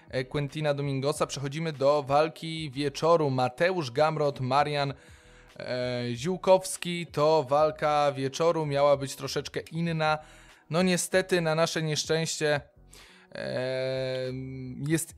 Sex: male